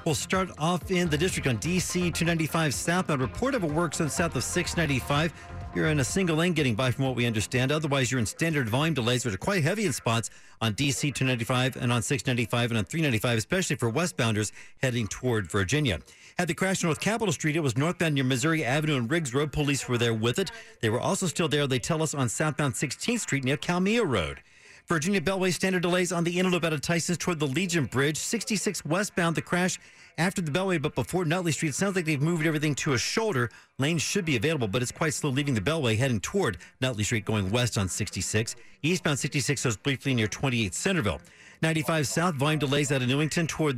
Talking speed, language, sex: 220 wpm, English, male